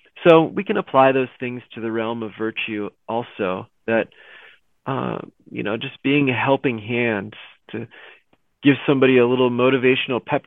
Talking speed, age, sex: 160 wpm, 30-49, male